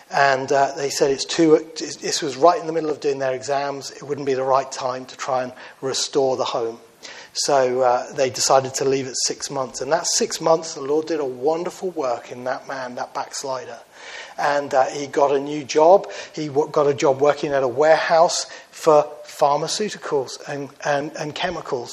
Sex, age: male, 40-59